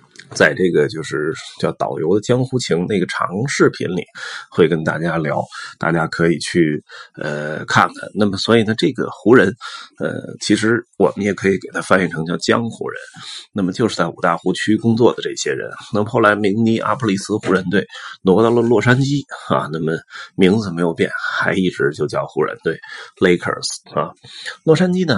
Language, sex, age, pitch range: Chinese, male, 30-49, 100-140 Hz